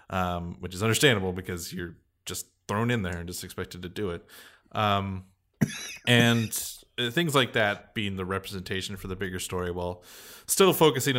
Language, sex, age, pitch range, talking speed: English, male, 20-39, 90-110 Hz, 165 wpm